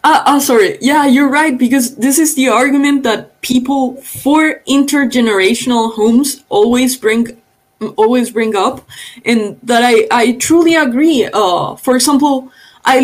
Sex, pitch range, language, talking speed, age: female, 220-285 Hz, Spanish, 145 wpm, 20-39